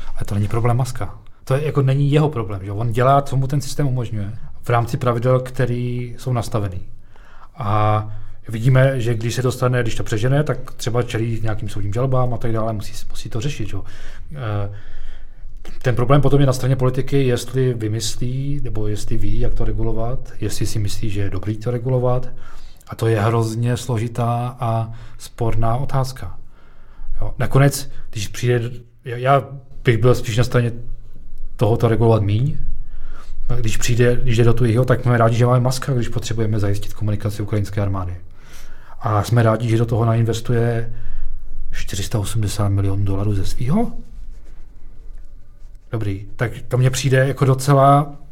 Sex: male